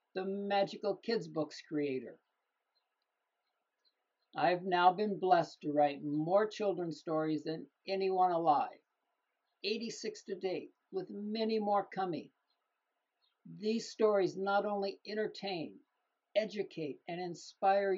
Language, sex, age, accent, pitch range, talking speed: English, male, 60-79, American, 165-200 Hz, 105 wpm